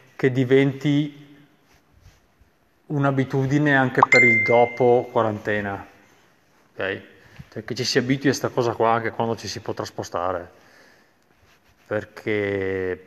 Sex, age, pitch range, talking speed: male, 30-49, 115-150 Hz, 115 wpm